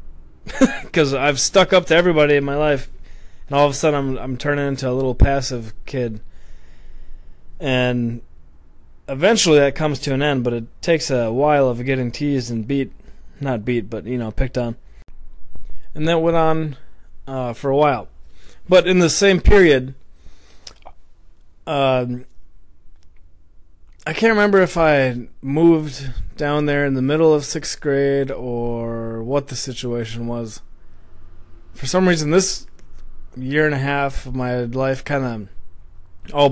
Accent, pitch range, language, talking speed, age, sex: American, 95-150 Hz, English, 155 wpm, 20-39, male